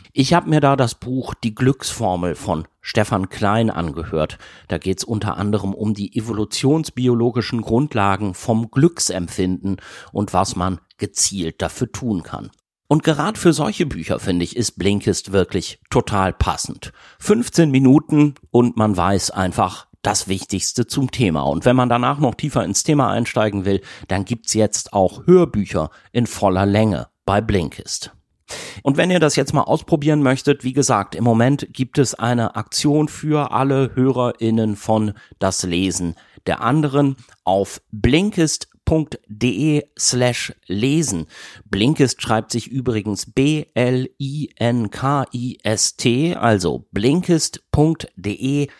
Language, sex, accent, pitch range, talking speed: German, male, German, 100-135 Hz, 135 wpm